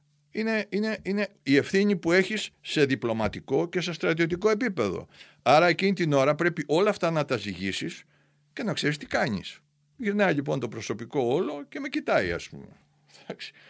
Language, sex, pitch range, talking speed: Greek, male, 115-190 Hz, 165 wpm